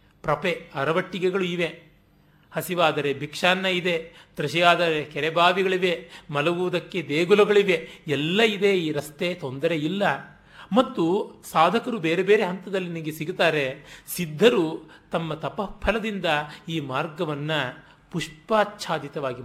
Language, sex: Kannada, male